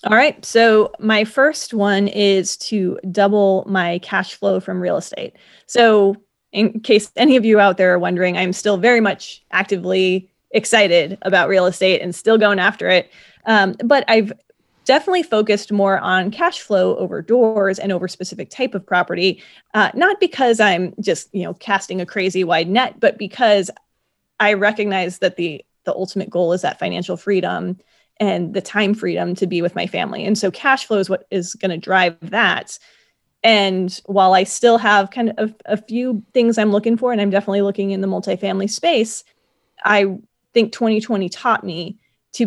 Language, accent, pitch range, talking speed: English, American, 185-220 Hz, 180 wpm